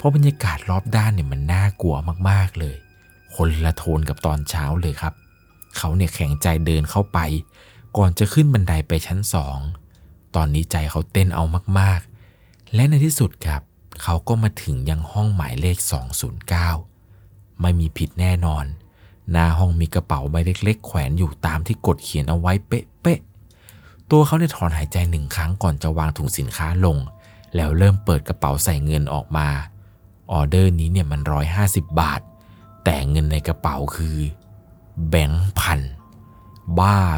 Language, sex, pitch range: Thai, male, 80-100 Hz